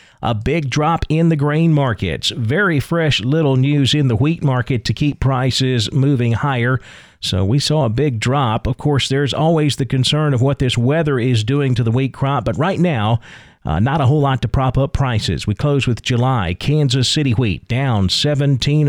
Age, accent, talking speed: 40-59, American, 200 wpm